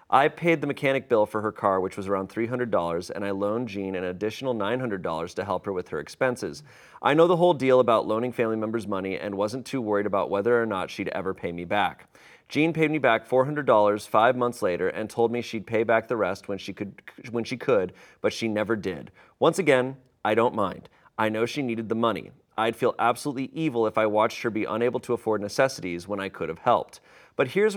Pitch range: 110-135 Hz